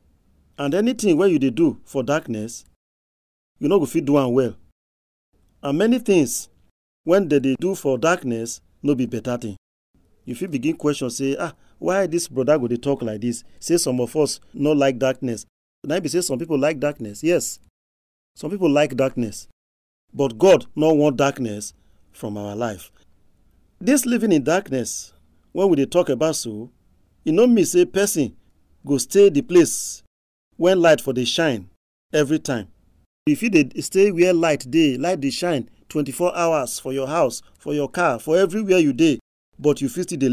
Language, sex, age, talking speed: English, male, 40-59, 175 wpm